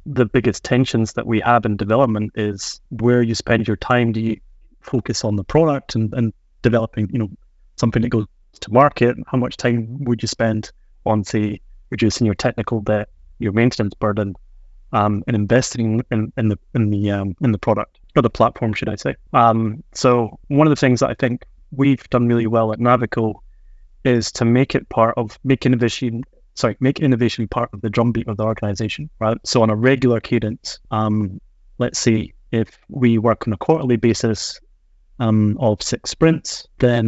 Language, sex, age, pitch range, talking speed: English, male, 20-39, 105-125 Hz, 190 wpm